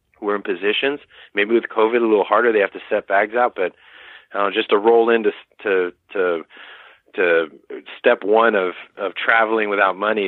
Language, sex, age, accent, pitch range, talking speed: English, male, 30-49, American, 100-140 Hz, 180 wpm